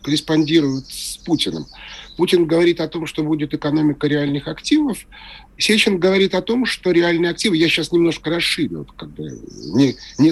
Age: 40-59